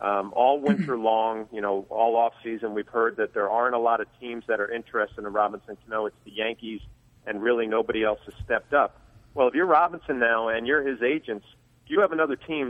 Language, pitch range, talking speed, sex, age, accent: English, 105-125 Hz, 225 wpm, male, 40-59, American